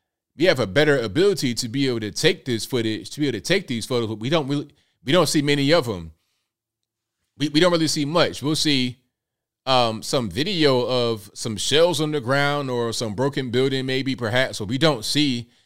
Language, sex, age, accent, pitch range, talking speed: English, male, 30-49, American, 110-140 Hz, 215 wpm